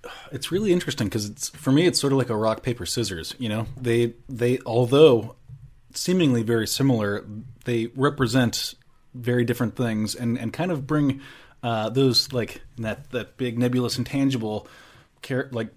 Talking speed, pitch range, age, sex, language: 160 wpm, 110-130 Hz, 20-39, male, English